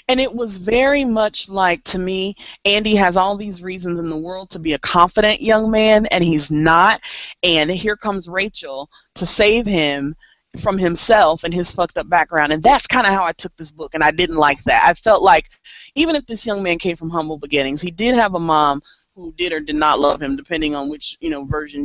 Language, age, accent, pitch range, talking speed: English, 30-49, American, 150-200 Hz, 230 wpm